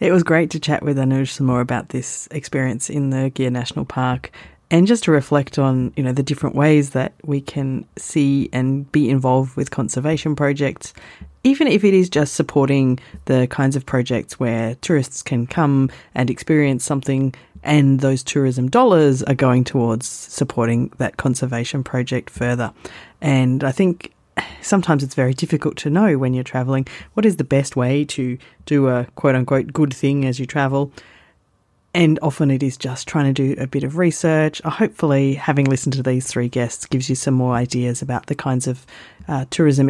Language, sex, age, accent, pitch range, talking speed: English, female, 30-49, Australian, 130-150 Hz, 185 wpm